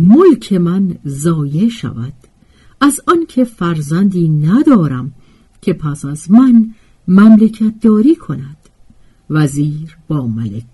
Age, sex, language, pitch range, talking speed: 50-69, female, Persian, 155-245 Hz, 100 wpm